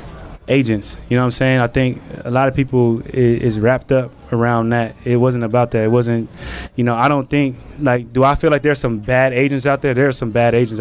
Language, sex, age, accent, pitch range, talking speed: English, male, 20-39, American, 115-135 Hz, 245 wpm